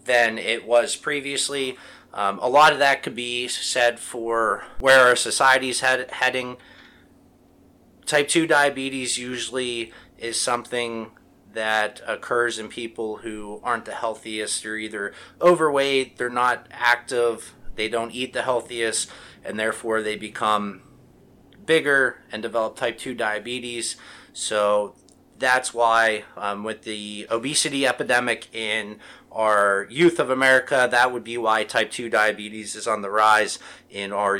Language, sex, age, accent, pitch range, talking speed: English, male, 30-49, American, 110-135 Hz, 135 wpm